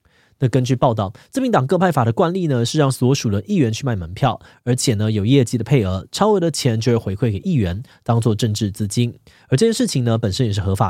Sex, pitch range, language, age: male, 115-150 Hz, Chinese, 20-39